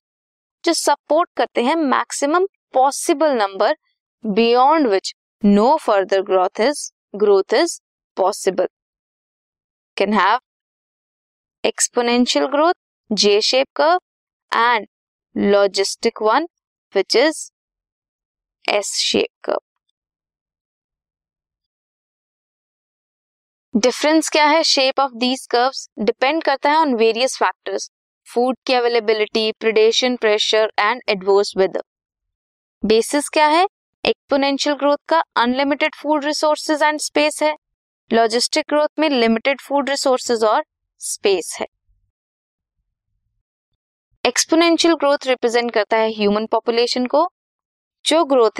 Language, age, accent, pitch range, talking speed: Hindi, 20-39, native, 215-300 Hz, 90 wpm